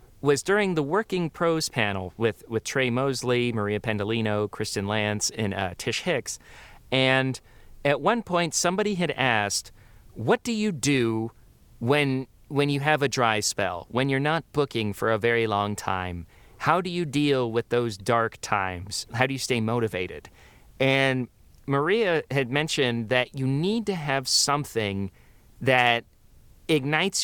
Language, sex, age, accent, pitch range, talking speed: English, male, 40-59, American, 110-150 Hz, 155 wpm